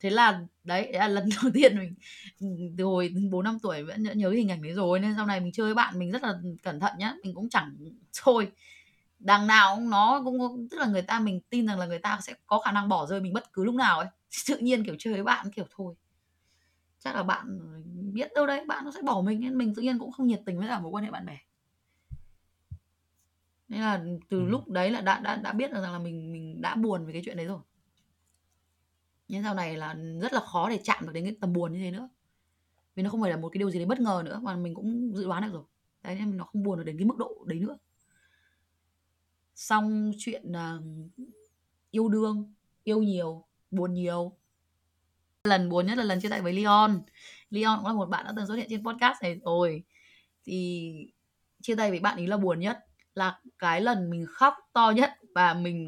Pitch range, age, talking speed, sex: 170-220 Hz, 20-39, 235 wpm, female